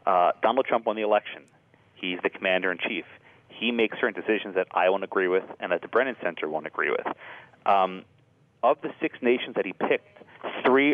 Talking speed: 190 wpm